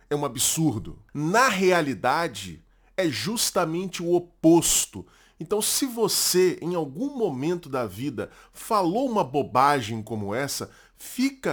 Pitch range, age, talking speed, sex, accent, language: 125-175 Hz, 20-39, 120 wpm, male, Brazilian, Portuguese